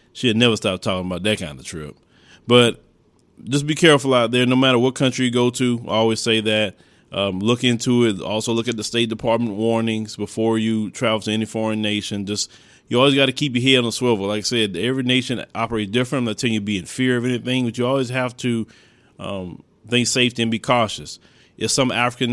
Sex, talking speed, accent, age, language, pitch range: male, 235 wpm, American, 20-39, English, 110-125 Hz